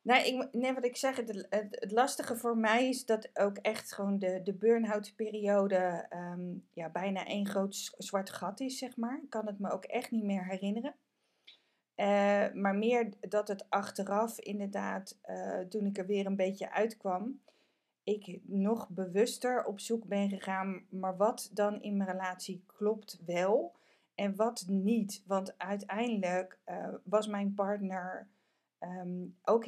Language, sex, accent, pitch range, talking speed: Dutch, female, Dutch, 190-225 Hz, 150 wpm